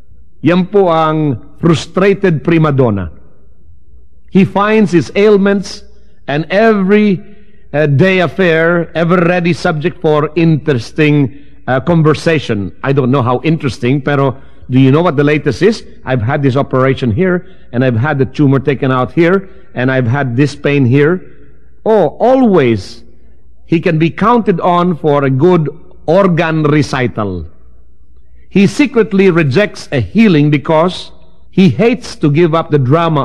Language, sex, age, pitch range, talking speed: English, male, 50-69, 120-180 Hz, 140 wpm